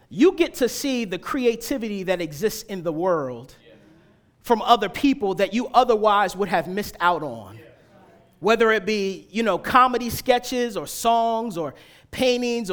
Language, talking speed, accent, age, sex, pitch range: English, 155 wpm, American, 30-49, male, 185-250 Hz